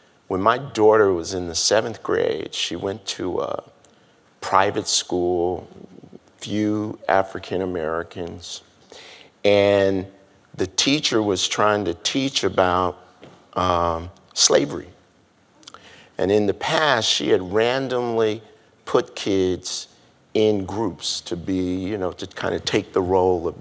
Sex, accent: male, American